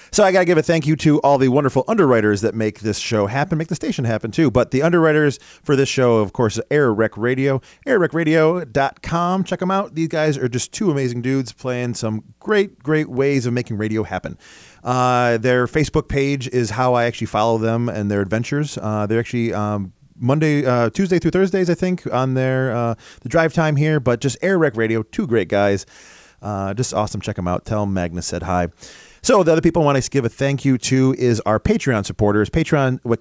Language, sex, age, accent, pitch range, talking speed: English, male, 30-49, American, 110-150 Hz, 215 wpm